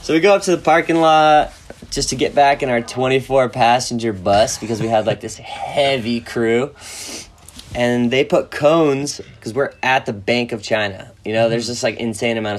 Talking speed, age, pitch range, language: 195 wpm, 20-39, 105-135 Hz, English